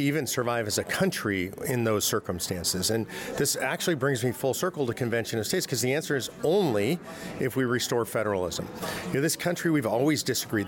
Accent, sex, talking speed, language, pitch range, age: American, male, 195 wpm, English, 115-140 Hz, 40-59